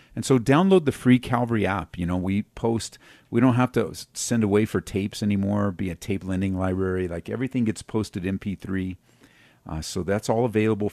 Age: 40-59